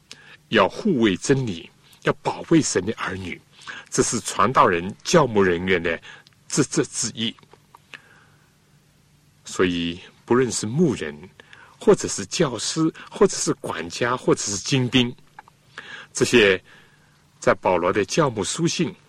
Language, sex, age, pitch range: Chinese, male, 60-79, 115-160 Hz